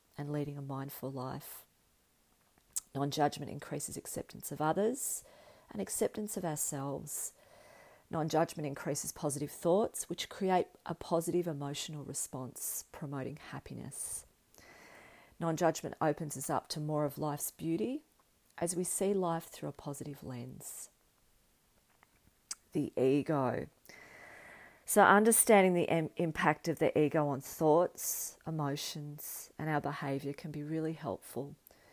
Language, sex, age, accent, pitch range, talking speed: English, female, 40-59, Australian, 145-170 Hz, 115 wpm